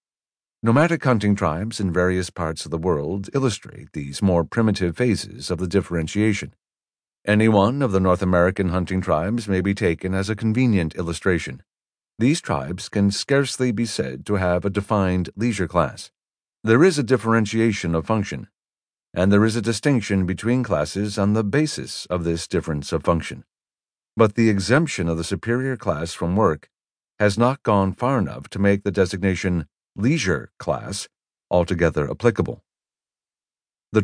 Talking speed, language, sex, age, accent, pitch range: 155 wpm, English, male, 50-69, American, 90-110 Hz